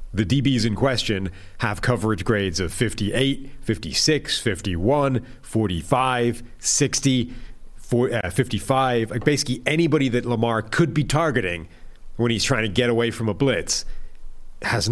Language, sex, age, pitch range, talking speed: English, male, 40-59, 100-120 Hz, 130 wpm